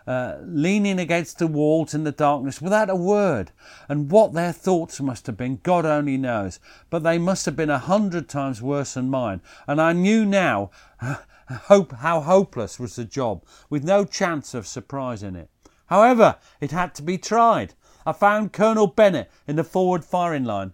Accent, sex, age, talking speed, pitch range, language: British, male, 50-69, 180 wpm, 130-175 Hz, English